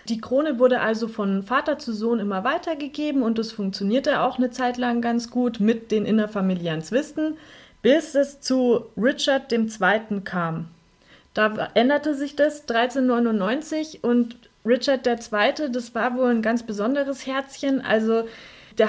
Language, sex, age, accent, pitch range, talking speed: German, female, 30-49, German, 215-265 Hz, 150 wpm